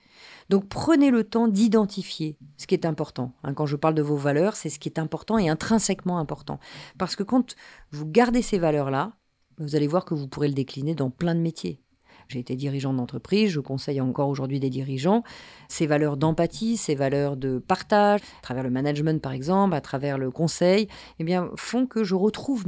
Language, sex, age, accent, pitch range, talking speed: French, female, 40-59, French, 145-195 Hz, 200 wpm